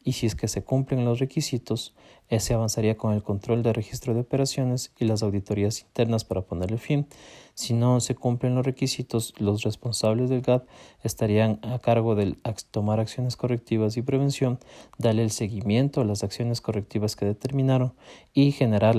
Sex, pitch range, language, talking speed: male, 110-125 Hz, Spanish, 170 wpm